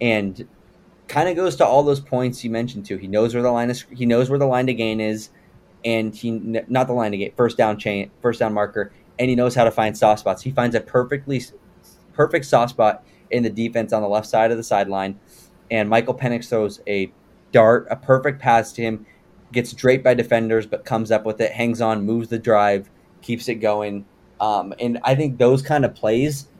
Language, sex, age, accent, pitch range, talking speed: English, male, 20-39, American, 105-125 Hz, 225 wpm